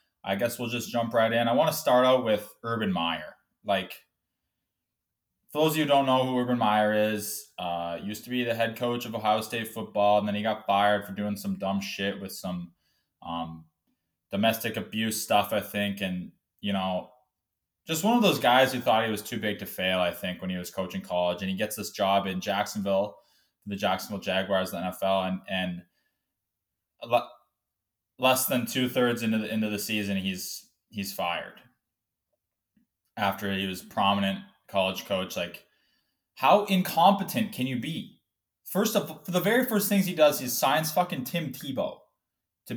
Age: 20-39